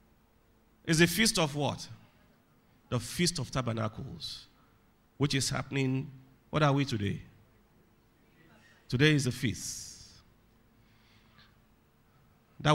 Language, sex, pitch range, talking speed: English, male, 115-170 Hz, 100 wpm